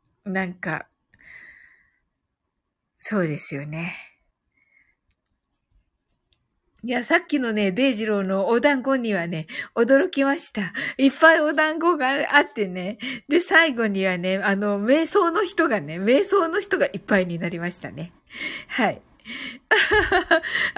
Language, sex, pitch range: Japanese, female, 200-275 Hz